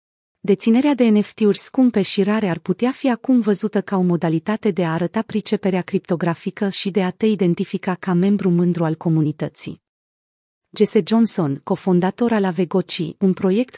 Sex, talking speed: female, 155 wpm